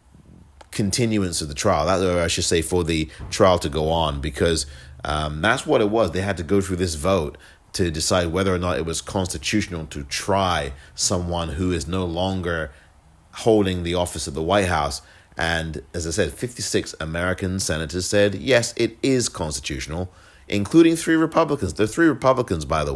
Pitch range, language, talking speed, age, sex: 80-100 Hz, English, 180 wpm, 30-49, male